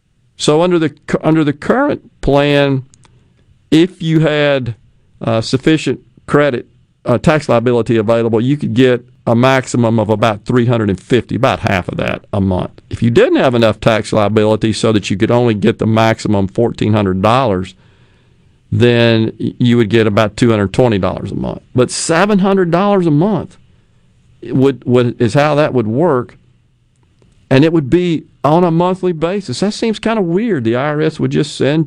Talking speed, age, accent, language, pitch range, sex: 160 wpm, 50-69, American, English, 115-150 Hz, male